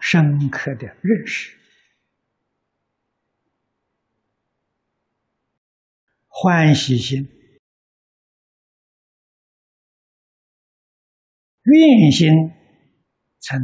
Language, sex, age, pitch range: Chinese, male, 60-79, 135-205 Hz